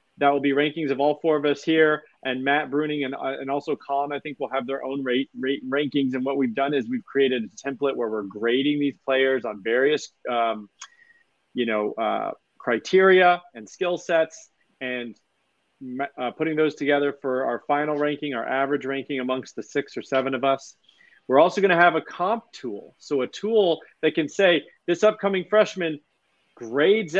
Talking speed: 190 wpm